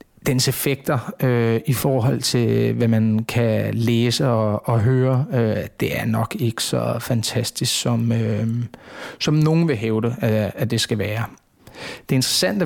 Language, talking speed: Danish, 145 wpm